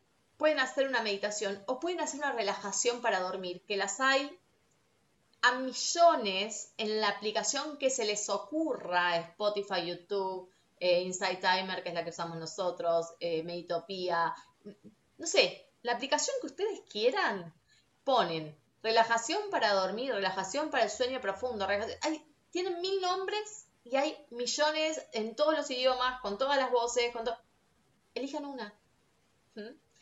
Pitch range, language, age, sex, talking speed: 175-265 Hz, Spanish, 20-39, female, 145 wpm